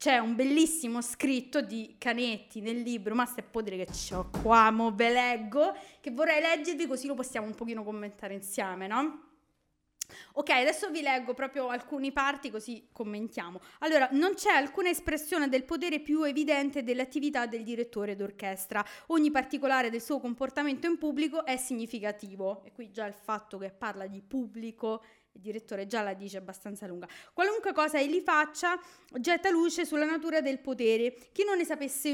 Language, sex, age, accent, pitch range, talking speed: Italian, female, 20-39, native, 220-300 Hz, 170 wpm